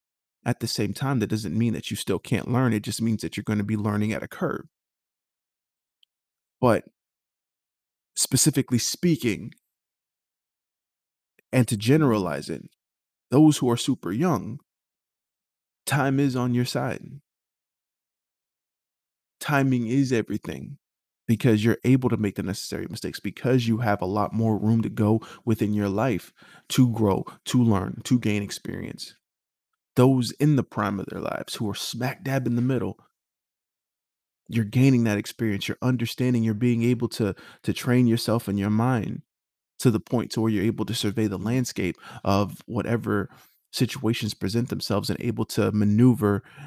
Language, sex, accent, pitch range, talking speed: English, male, American, 105-125 Hz, 155 wpm